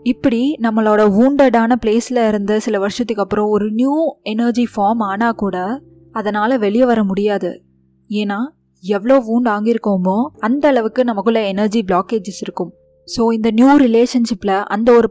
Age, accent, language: 20-39, native, Tamil